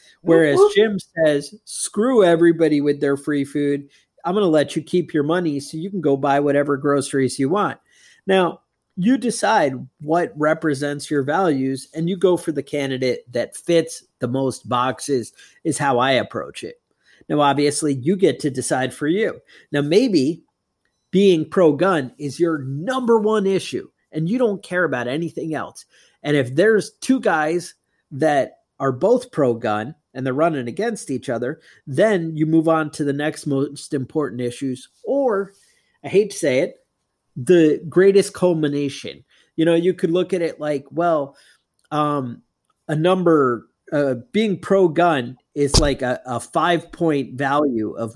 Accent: American